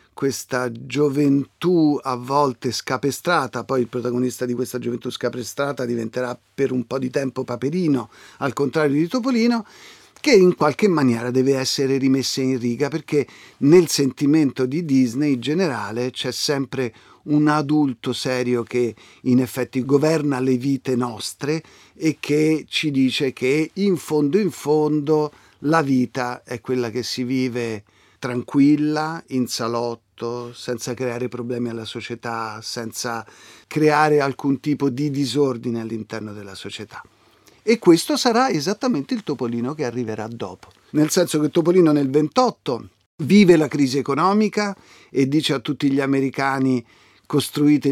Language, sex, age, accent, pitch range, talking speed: Italian, male, 50-69, native, 125-150 Hz, 140 wpm